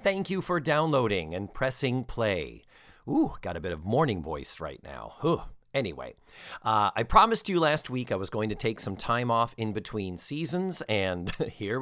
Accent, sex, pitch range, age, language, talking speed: American, male, 105-140 Hz, 40-59, English, 185 wpm